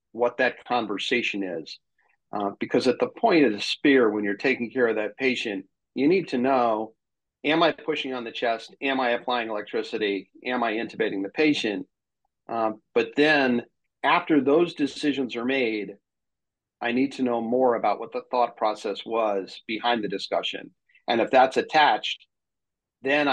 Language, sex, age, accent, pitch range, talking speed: English, male, 40-59, American, 100-125 Hz, 165 wpm